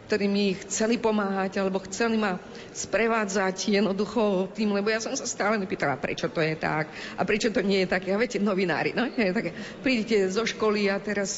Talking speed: 185 wpm